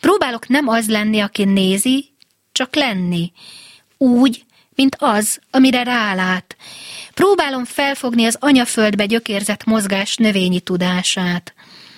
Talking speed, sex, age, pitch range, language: 105 wpm, female, 30-49, 195-250 Hz, Hungarian